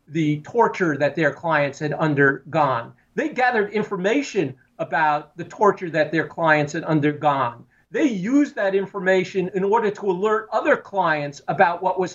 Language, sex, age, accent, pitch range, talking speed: English, male, 50-69, American, 150-200 Hz, 155 wpm